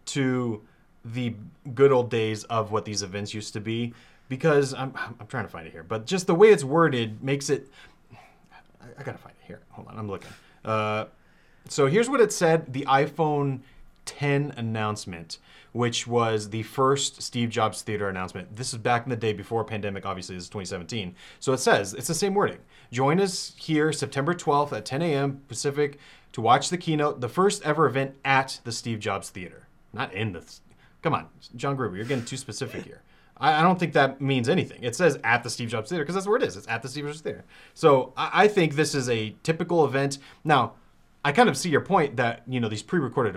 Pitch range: 110-145 Hz